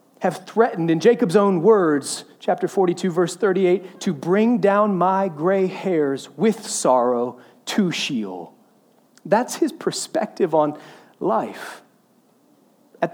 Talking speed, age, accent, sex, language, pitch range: 120 wpm, 30-49, American, male, English, 170-220 Hz